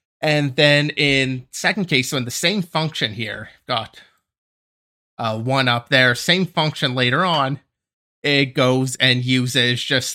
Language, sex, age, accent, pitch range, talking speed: English, male, 30-49, American, 125-160 Hz, 150 wpm